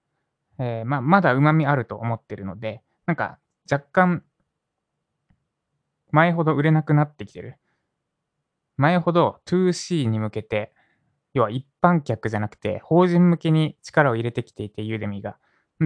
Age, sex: 20-39, male